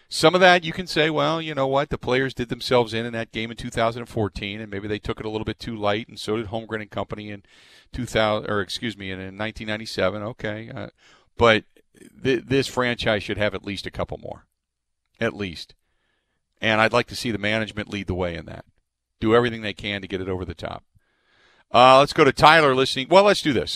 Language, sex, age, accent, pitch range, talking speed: English, male, 40-59, American, 110-150 Hz, 225 wpm